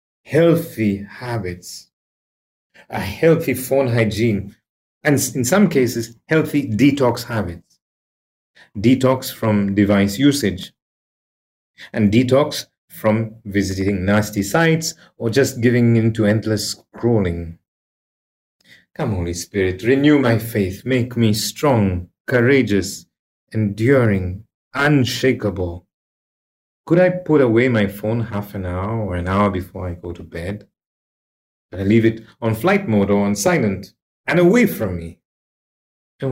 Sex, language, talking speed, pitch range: male, English, 120 wpm, 100-135 Hz